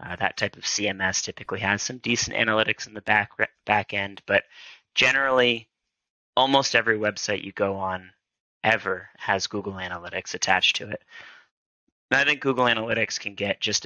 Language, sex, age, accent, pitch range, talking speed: English, male, 30-49, American, 95-110 Hz, 160 wpm